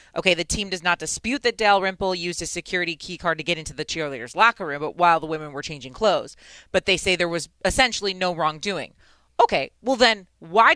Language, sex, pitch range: English, female, 165-215 Hz